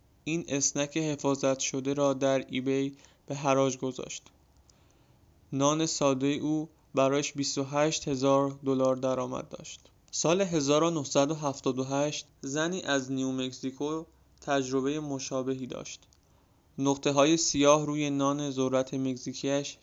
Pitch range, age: 135-145 Hz, 20-39